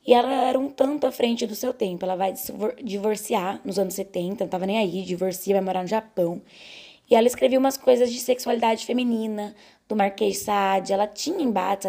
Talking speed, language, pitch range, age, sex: 200 wpm, Portuguese, 195-240 Hz, 10-29, female